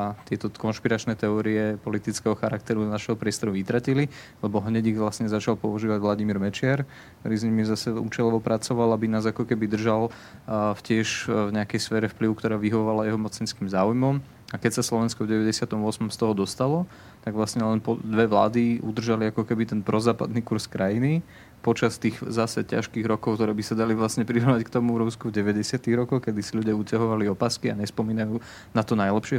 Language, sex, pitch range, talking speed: Slovak, male, 105-115 Hz, 180 wpm